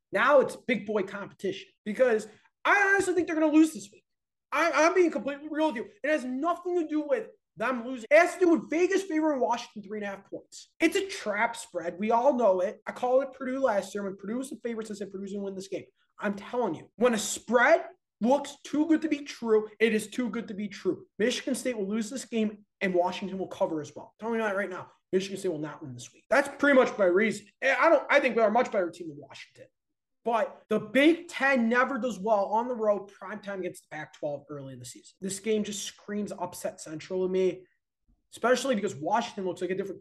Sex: male